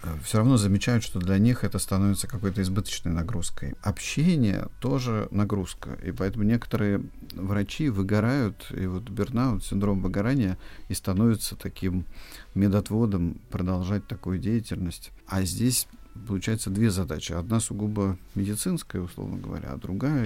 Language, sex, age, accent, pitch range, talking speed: Russian, male, 50-69, native, 95-110 Hz, 125 wpm